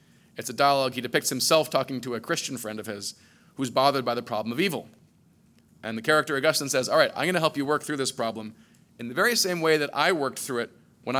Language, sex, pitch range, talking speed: English, male, 120-155 Hz, 250 wpm